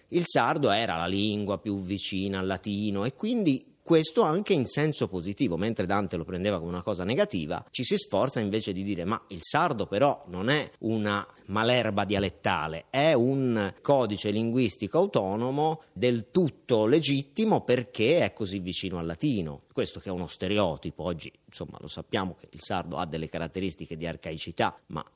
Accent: native